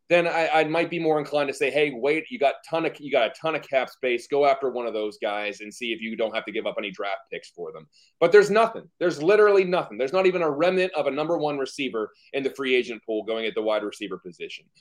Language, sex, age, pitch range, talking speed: English, male, 30-49, 130-175 Hz, 265 wpm